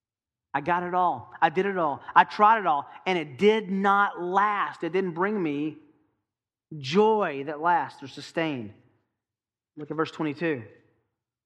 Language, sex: English, male